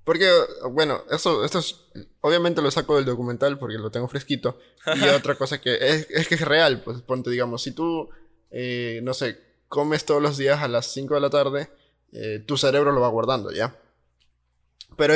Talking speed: 195 wpm